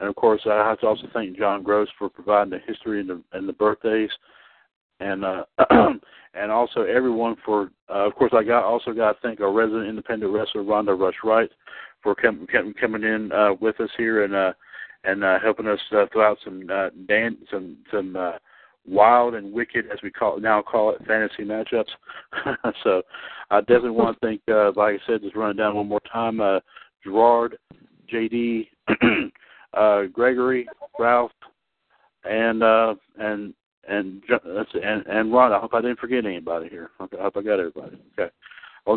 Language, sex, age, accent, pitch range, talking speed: English, male, 60-79, American, 105-115 Hz, 185 wpm